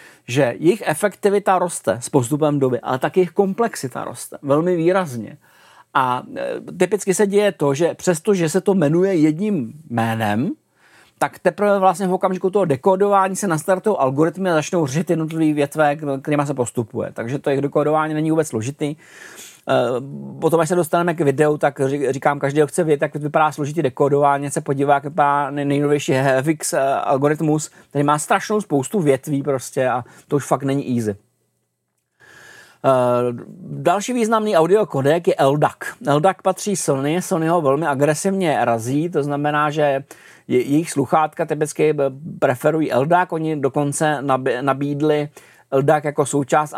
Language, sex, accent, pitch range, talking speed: Czech, male, native, 140-175 Hz, 145 wpm